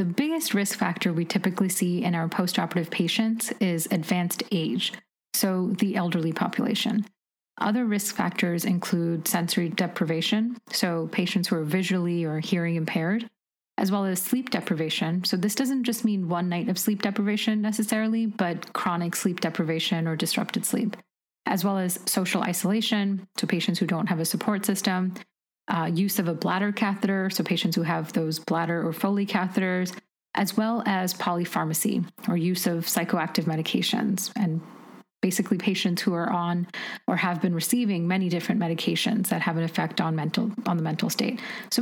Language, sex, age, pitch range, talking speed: English, female, 30-49, 175-215 Hz, 165 wpm